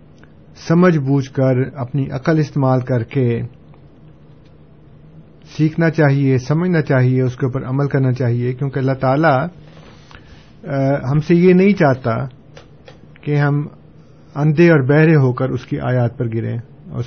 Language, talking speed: Urdu, 135 wpm